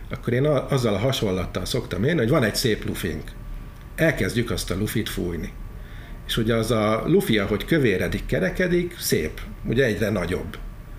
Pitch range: 100-125 Hz